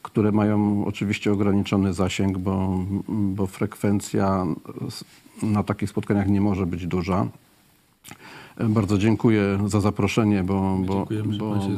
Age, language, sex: 40-59, Polish, male